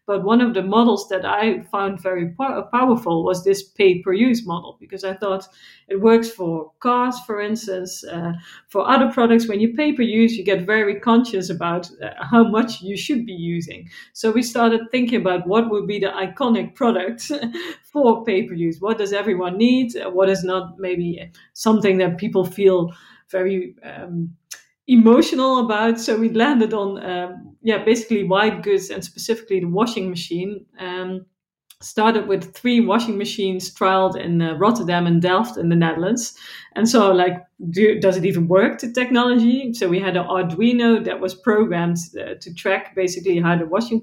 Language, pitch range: English, 185-230 Hz